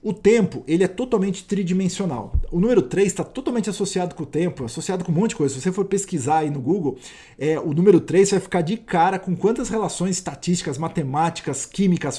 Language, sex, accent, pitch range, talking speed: Portuguese, male, Brazilian, 160-195 Hz, 205 wpm